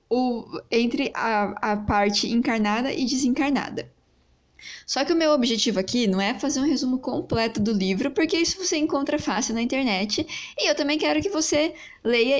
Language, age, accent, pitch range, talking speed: Portuguese, 10-29, Brazilian, 230-315 Hz, 170 wpm